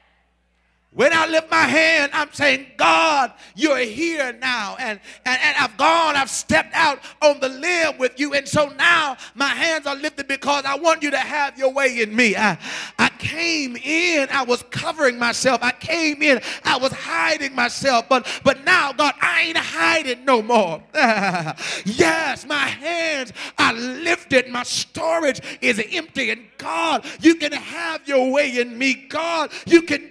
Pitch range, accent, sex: 260-320 Hz, American, male